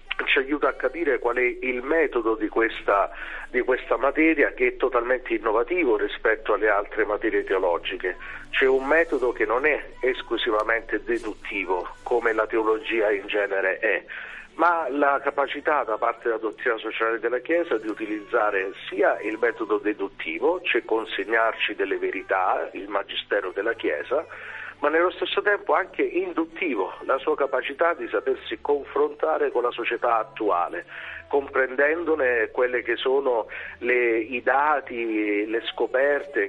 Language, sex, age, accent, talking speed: Italian, male, 50-69, native, 140 wpm